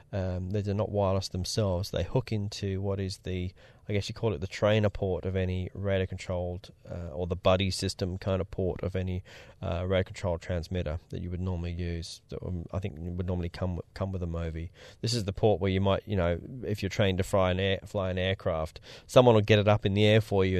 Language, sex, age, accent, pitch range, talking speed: English, male, 20-39, Australian, 90-105 Hz, 240 wpm